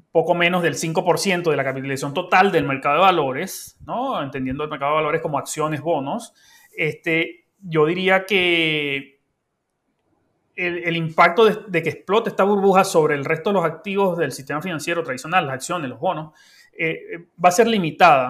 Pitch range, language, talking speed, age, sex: 150-205 Hz, Spanish, 175 wpm, 30-49, male